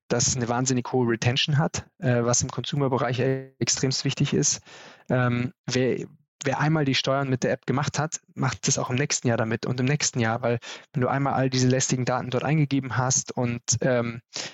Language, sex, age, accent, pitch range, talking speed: German, male, 20-39, German, 115-135 Hz, 200 wpm